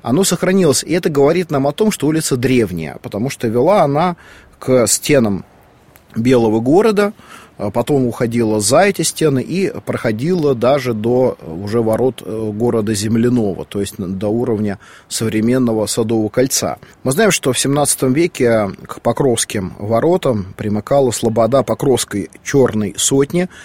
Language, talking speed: Russian, 135 wpm